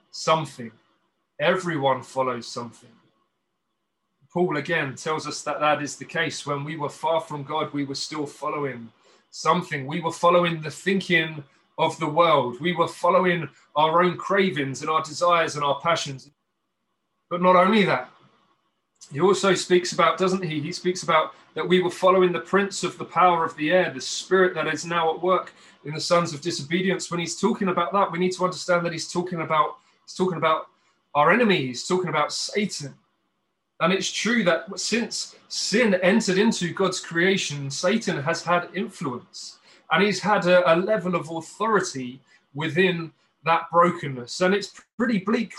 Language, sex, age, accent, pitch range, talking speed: English, male, 30-49, British, 155-190 Hz, 170 wpm